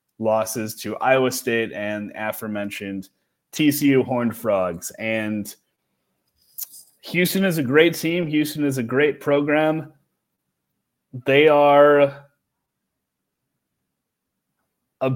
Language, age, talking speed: English, 30-49, 90 wpm